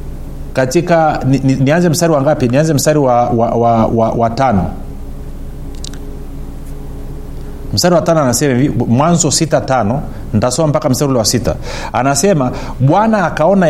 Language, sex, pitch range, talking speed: Swahili, male, 120-170 Hz, 120 wpm